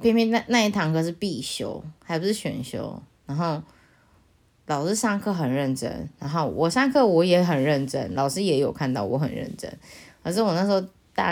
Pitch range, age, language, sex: 140-195 Hz, 20-39, Chinese, female